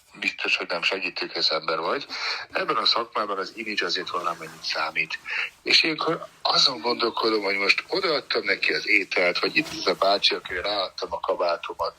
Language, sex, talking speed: Hungarian, male, 180 wpm